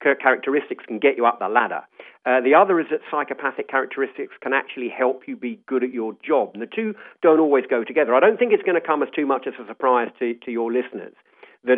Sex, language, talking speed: male, English, 245 wpm